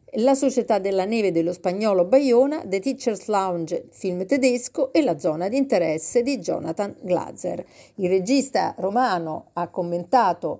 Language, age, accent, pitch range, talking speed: Italian, 40-59, native, 180-255 Hz, 140 wpm